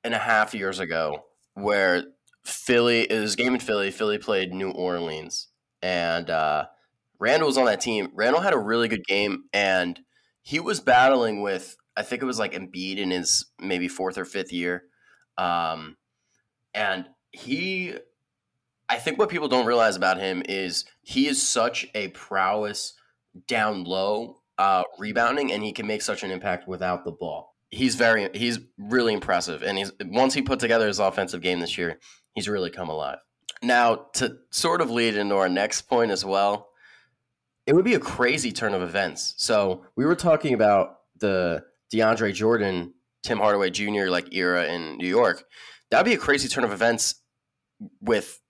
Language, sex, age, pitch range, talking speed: English, male, 20-39, 90-120 Hz, 175 wpm